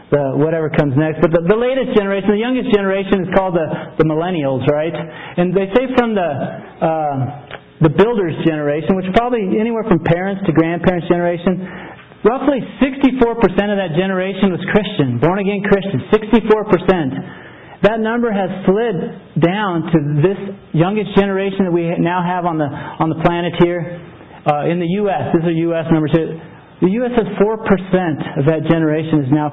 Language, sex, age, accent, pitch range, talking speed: English, male, 40-59, American, 165-205 Hz, 170 wpm